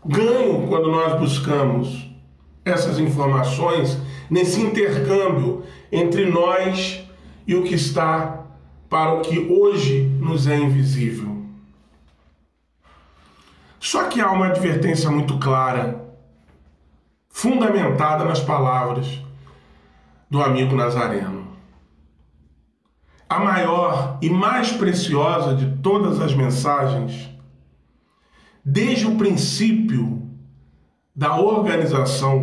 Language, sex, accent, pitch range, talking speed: Portuguese, male, Brazilian, 120-170 Hz, 85 wpm